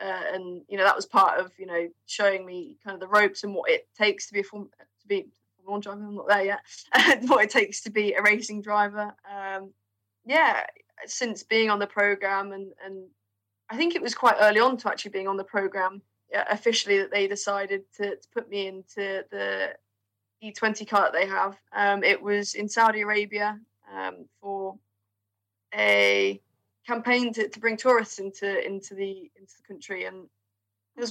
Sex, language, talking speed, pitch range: female, English, 195 wpm, 190-215 Hz